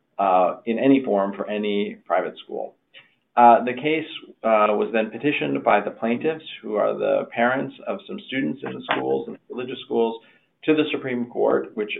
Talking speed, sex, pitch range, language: 180 wpm, male, 105-130 Hz, English